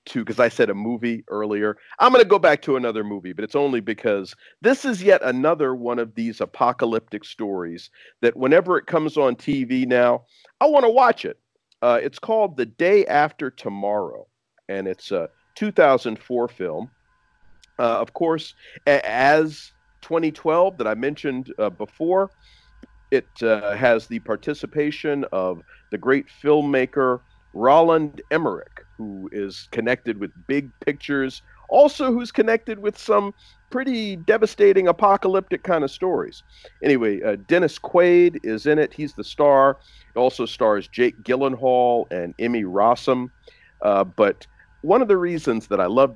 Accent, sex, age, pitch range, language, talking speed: American, male, 50-69, 115-190 Hz, English, 150 wpm